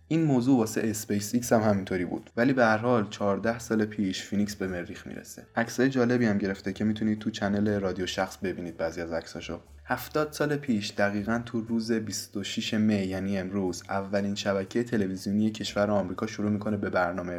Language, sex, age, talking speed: Persian, male, 20-39, 175 wpm